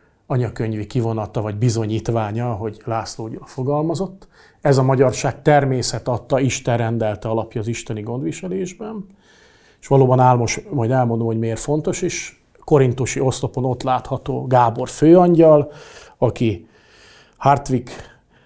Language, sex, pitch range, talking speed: English, male, 115-140 Hz, 115 wpm